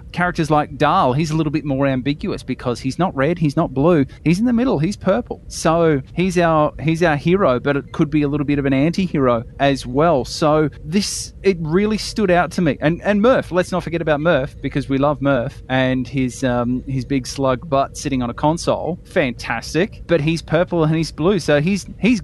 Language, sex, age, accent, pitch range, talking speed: English, male, 20-39, Australian, 120-160 Hz, 220 wpm